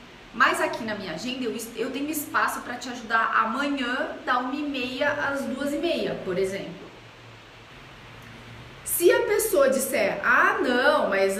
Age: 30-49